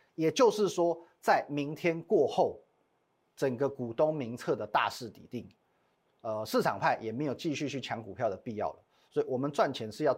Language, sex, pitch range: Chinese, male, 125-165 Hz